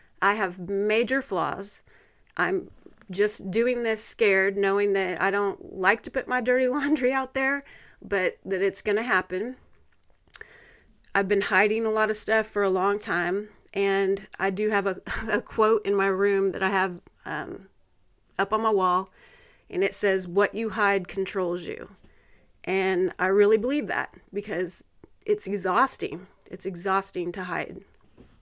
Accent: American